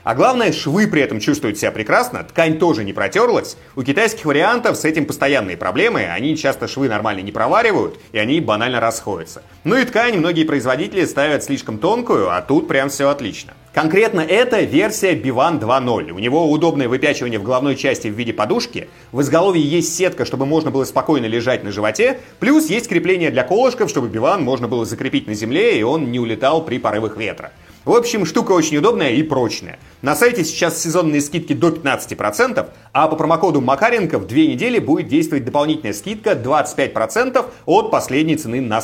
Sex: male